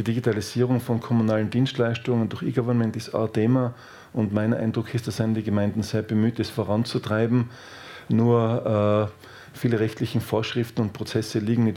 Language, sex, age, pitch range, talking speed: German, male, 50-69, 110-125 Hz, 160 wpm